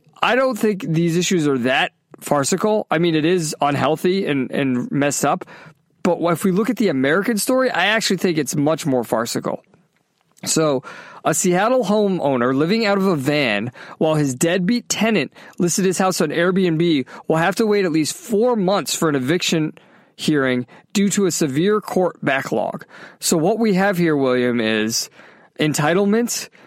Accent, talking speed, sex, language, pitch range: American, 170 wpm, male, English, 145-190 Hz